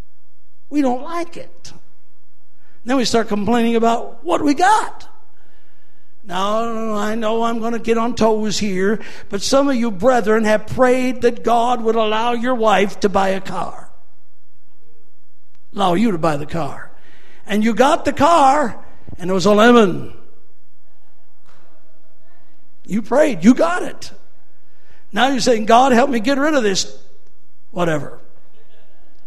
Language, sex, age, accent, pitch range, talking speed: English, male, 60-79, American, 210-270 Hz, 145 wpm